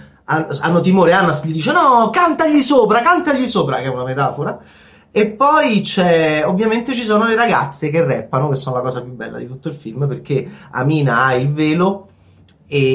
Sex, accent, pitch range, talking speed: male, native, 130-180 Hz, 185 wpm